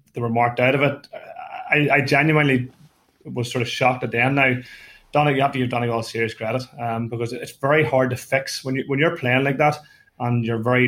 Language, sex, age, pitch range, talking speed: English, male, 20-39, 120-135 Hz, 230 wpm